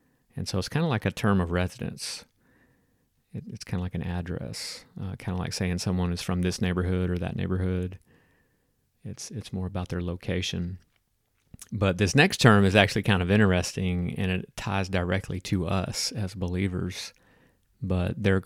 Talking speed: 175 wpm